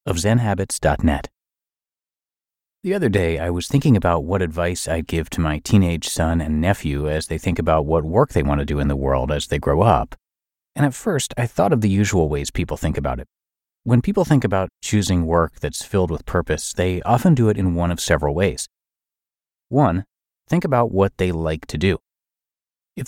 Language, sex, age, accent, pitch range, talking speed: English, male, 30-49, American, 80-115 Hz, 200 wpm